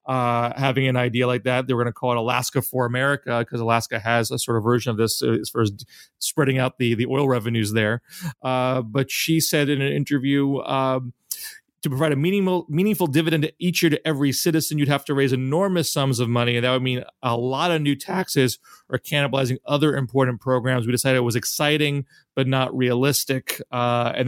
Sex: male